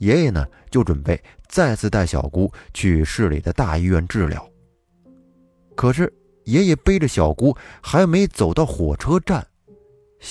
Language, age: Chinese, 30-49